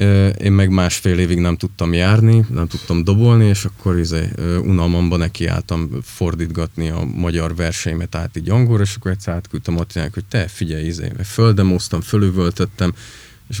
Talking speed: 145 wpm